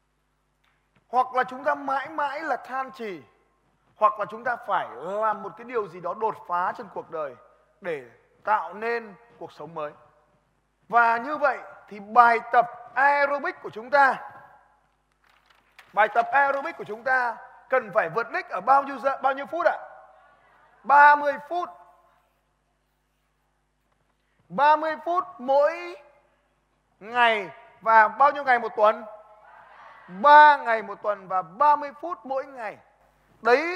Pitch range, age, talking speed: 210-280 Hz, 20-39, 145 wpm